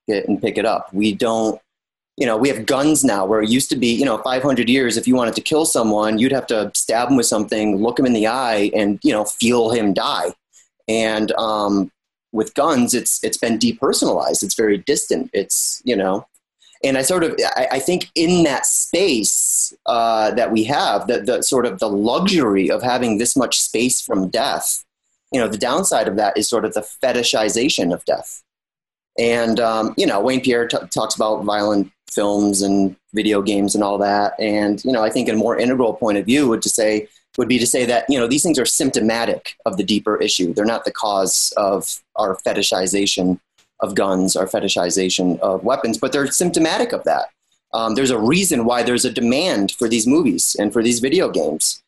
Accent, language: American, English